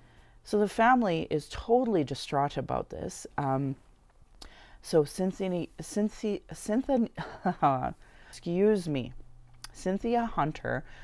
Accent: American